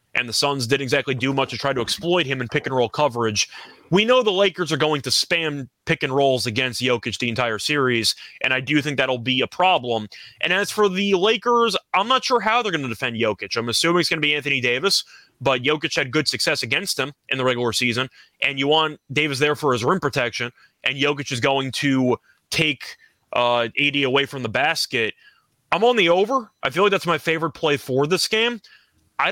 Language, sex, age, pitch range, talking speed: English, male, 20-39, 130-175 Hz, 215 wpm